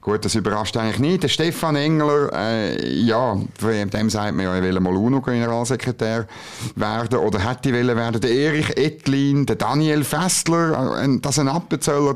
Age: 50-69